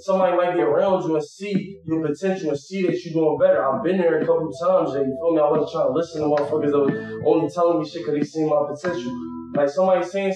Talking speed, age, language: 265 wpm, 20-39, English